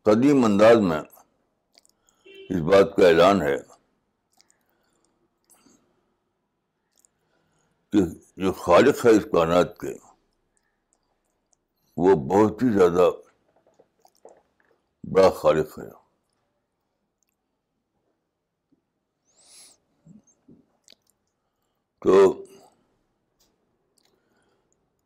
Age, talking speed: 60-79, 55 wpm